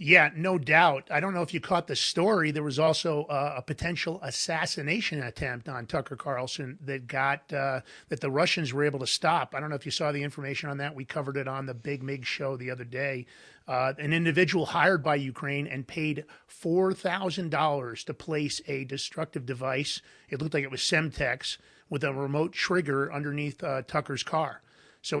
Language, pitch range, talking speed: English, 140-170 Hz, 195 wpm